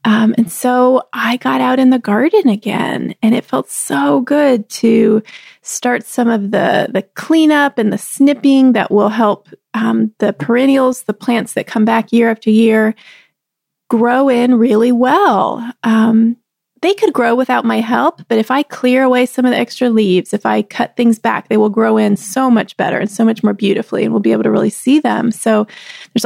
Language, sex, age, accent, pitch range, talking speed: English, female, 30-49, American, 220-255 Hz, 200 wpm